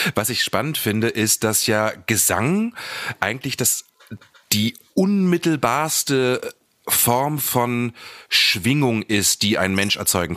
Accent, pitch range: German, 95-125 Hz